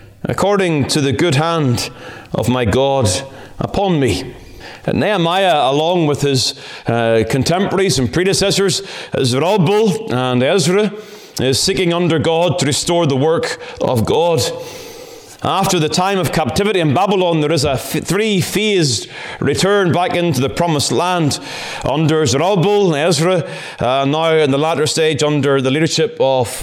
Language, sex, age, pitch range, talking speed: English, male, 30-49, 155-210 Hz, 140 wpm